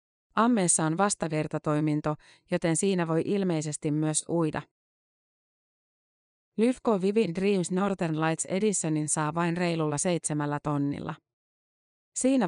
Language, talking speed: Finnish, 100 wpm